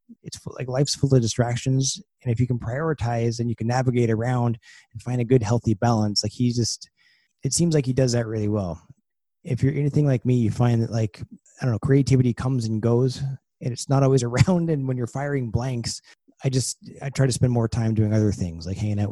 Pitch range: 105-130 Hz